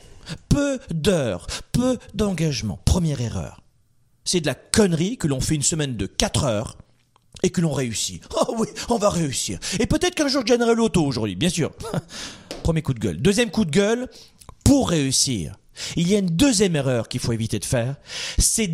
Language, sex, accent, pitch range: French, male, French, 130-210 Hz